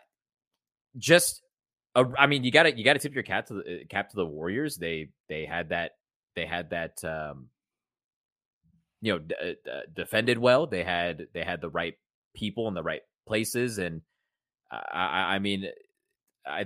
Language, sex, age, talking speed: English, male, 20-39, 165 wpm